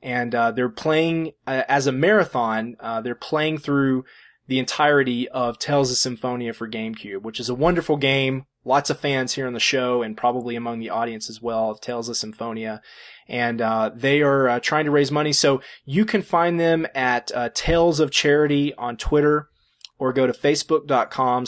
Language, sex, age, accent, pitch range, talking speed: English, male, 20-39, American, 120-145 Hz, 190 wpm